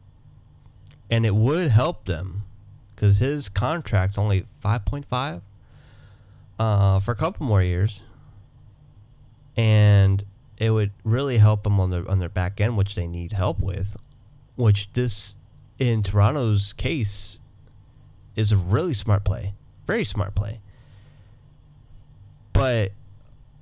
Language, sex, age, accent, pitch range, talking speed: English, male, 20-39, American, 100-125 Hz, 115 wpm